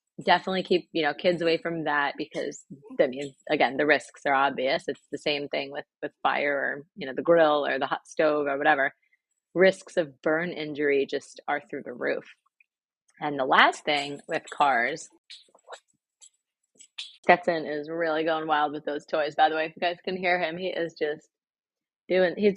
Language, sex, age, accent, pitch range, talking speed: English, female, 30-49, American, 150-190 Hz, 190 wpm